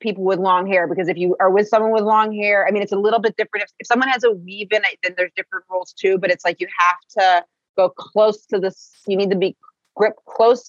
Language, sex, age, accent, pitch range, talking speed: English, female, 30-49, American, 175-220 Hz, 275 wpm